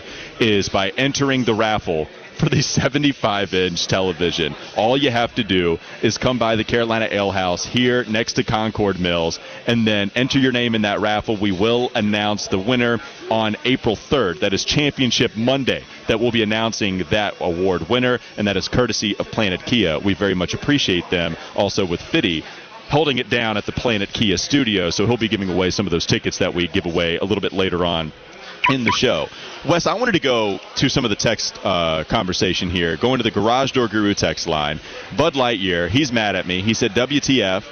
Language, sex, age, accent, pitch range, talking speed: English, male, 30-49, American, 100-125 Hz, 200 wpm